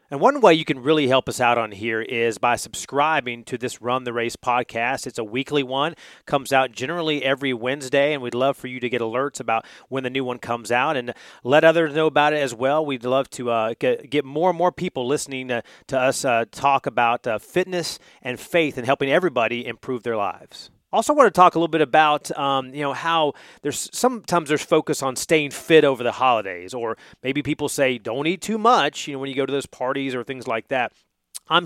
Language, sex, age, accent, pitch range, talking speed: English, male, 30-49, American, 125-155 Hz, 235 wpm